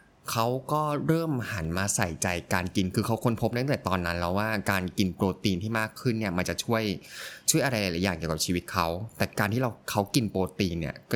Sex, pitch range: male, 95-120 Hz